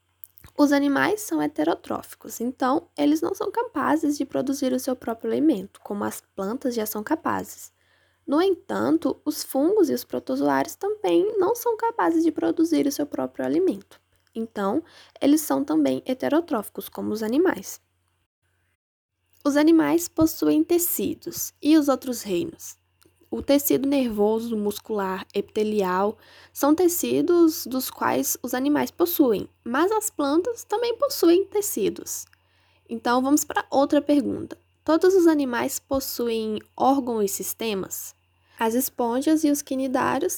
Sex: female